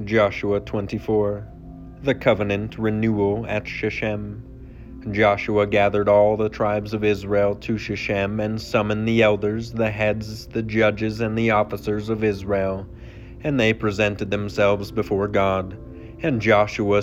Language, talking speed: English, 130 wpm